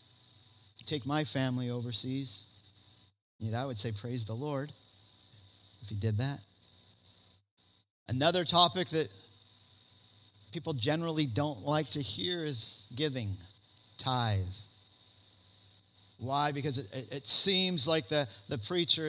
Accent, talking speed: American, 120 wpm